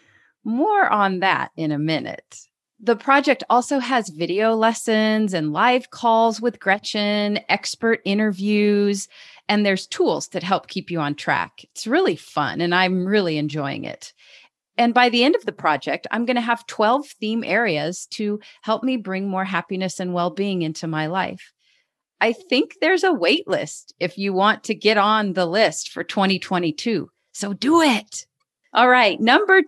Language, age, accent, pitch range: English, 40-59, American, 175-235 Hz